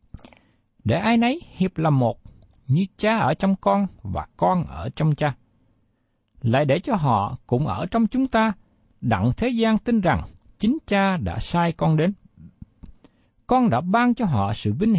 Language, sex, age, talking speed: Vietnamese, male, 60-79, 170 wpm